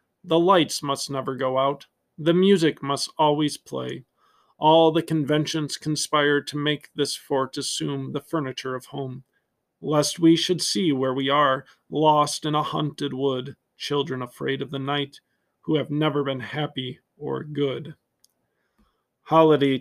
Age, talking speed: 40-59, 150 wpm